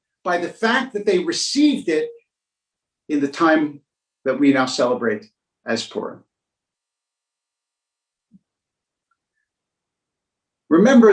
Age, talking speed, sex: 50-69, 90 wpm, male